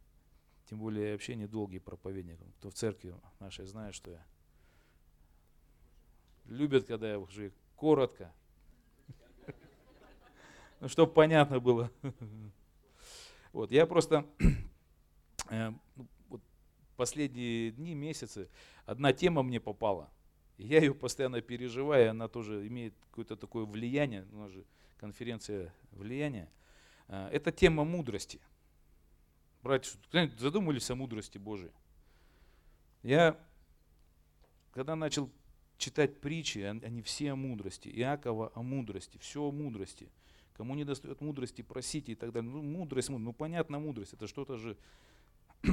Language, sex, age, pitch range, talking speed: Russian, male, 40-59, 80-135 Hz, 115 wpm